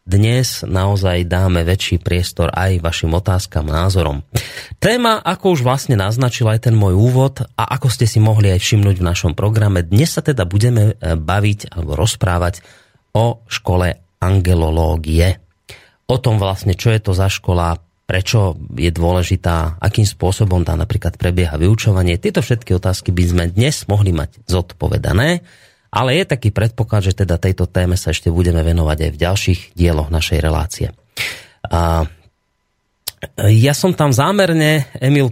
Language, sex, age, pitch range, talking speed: Slovak, male, 30-49, 90-125 Hz, 150 wpm